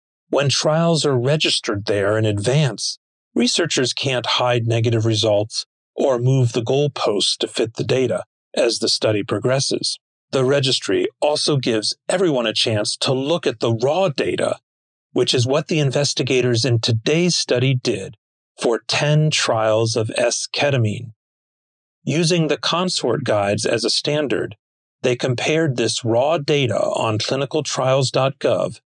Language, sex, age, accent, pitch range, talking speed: English, male, 40-59, American, 115-145 Hz, 135 wpm